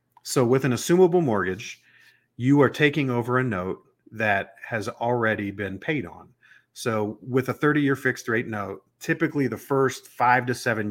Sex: male